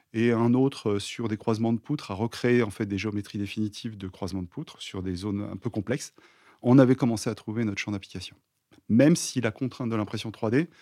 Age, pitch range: 30-49, 105-130 Hz